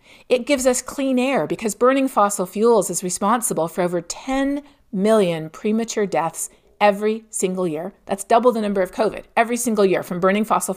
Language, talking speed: English, 180 wpm